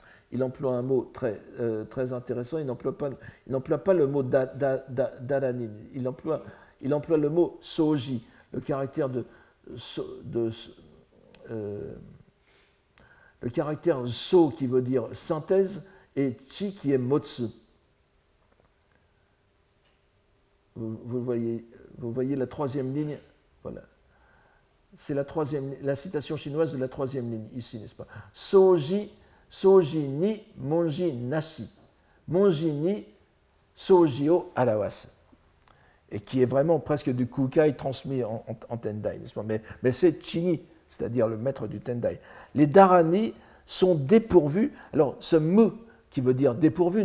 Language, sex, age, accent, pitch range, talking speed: French, male, 60-79, French, 125-170 Hz, 140 wpm